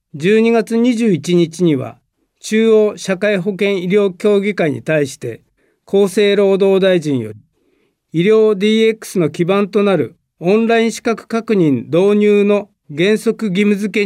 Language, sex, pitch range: Japanese, male, 165-210 Hz